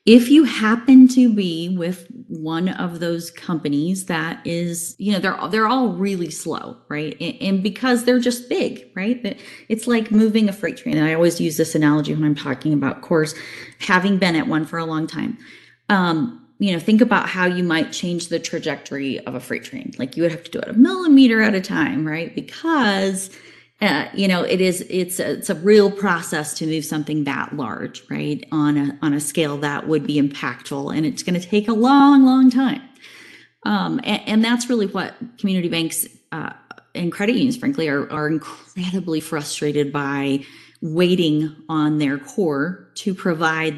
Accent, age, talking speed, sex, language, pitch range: American, 30-49, 190 wpm, female, English, 155-215 Hz